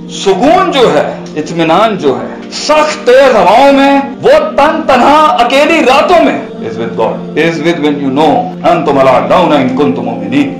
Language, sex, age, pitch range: Urdu, male, 50-69, 190-300 Hz